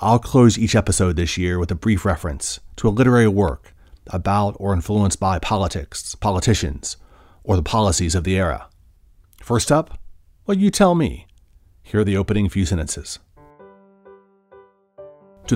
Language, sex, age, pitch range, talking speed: English, male, 40-59, 85-105 Hz, 150 wpm